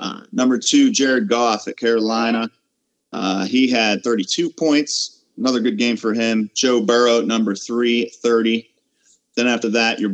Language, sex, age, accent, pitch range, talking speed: English, male, 30-49, American, 100-120 Hz, 155 wpm